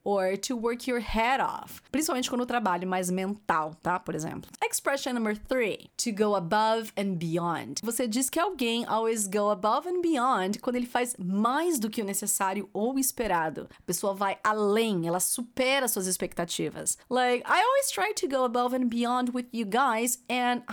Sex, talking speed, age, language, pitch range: female, 185 wpm, 30-49, Portuguese, 200-290 Hz